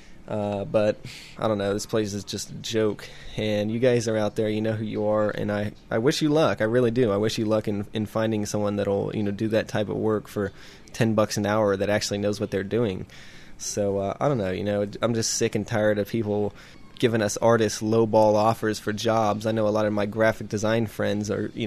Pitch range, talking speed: 105-115 Hz, 250 wpm